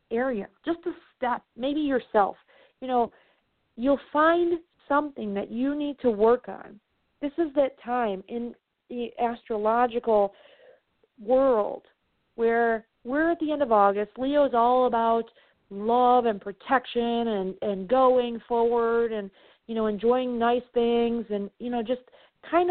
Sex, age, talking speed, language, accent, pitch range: female, 40-59, 145 wpm, English, American, 215-265 Hz